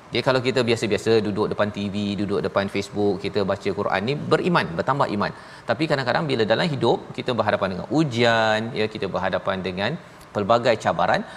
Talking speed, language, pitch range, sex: 170 wpm, Malayalam, 110-135 Hz, male